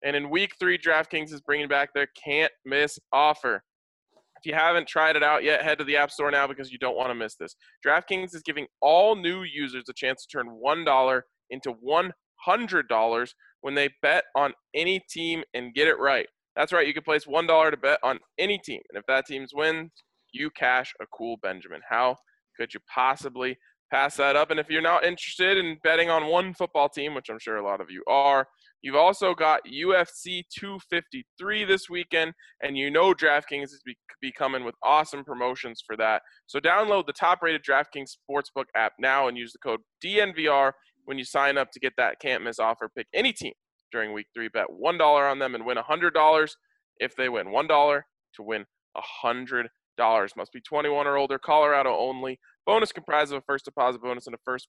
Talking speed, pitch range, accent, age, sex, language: 195 wpm, 130-165 Hz, American, 20-39, male, English